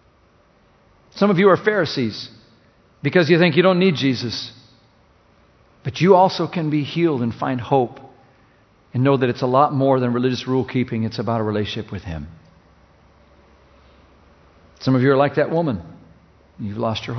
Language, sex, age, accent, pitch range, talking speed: English, male, 50-69, American, 95-125 Hz, 170 wpm